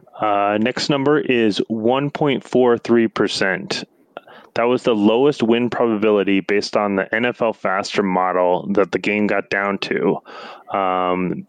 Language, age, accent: English, 30-49, American